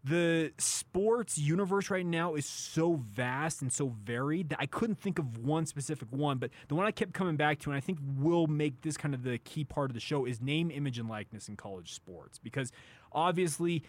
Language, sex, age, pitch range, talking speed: English, male, 20-39, 125-160 Hz, 220 wpm